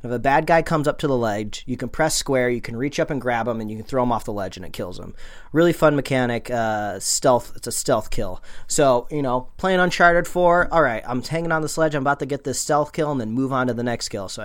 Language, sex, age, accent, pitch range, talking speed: English, male, 30-49, American, 120-150 Hz, 290 wpm